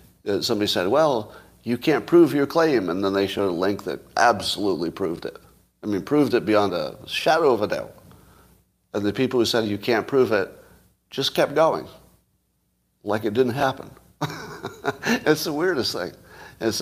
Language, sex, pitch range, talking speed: English, male, 100-130 Hz, 175 wpm